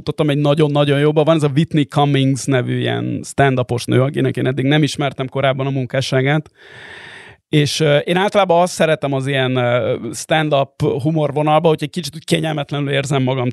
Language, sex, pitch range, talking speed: Hungarian, male, 130-150 Hz, 160 wpm